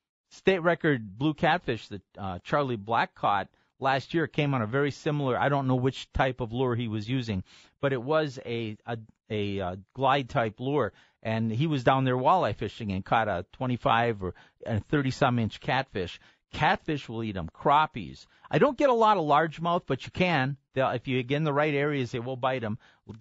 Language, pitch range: English, 115-145 Hz